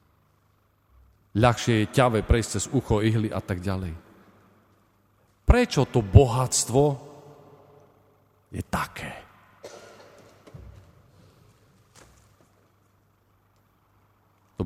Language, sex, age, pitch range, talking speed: Slovak, male, 40-59, 100-145 Hz, 65 wpm